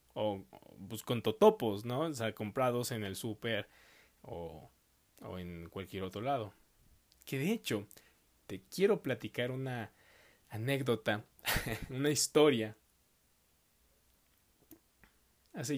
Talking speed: 105 wpm